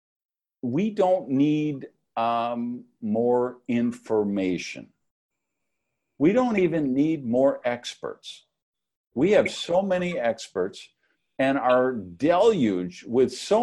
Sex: male